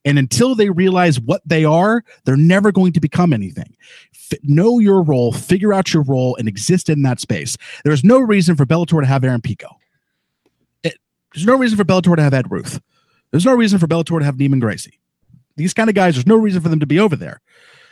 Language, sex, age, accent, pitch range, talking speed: English, male, 40-59, American, 130-175 Hz, 220 wpm